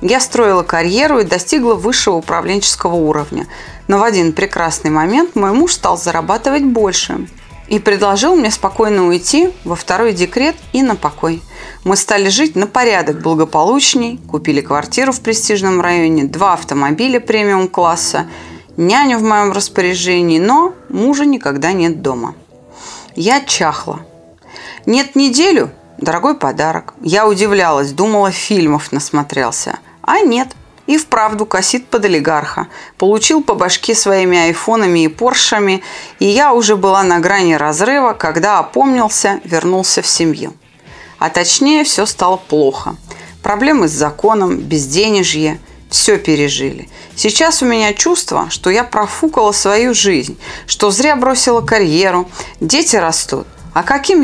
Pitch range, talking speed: 170-245 Hz, 130 wpm